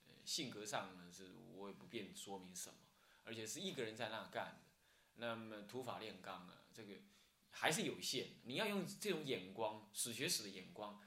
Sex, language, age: male, Chinese, 20-39